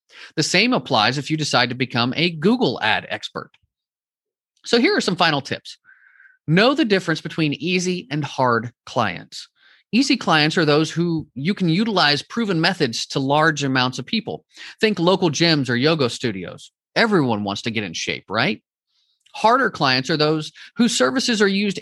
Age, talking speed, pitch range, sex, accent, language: 30-49, 170 wpm, 135-195 Hz, male, American, English